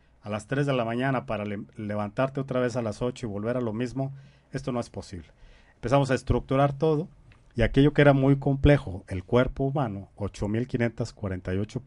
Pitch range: 110-140 Hz